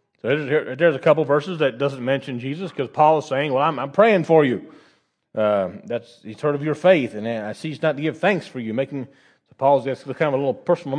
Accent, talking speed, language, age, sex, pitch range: American, 240 wpm, English, 40-59, male, 135-185 Hz